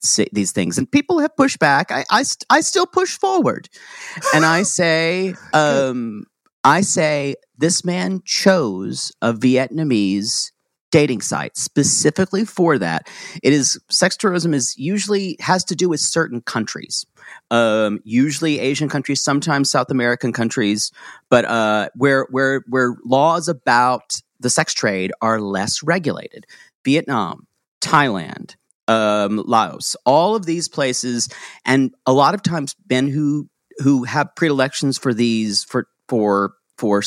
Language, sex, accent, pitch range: English, male, American, 120-180 Hz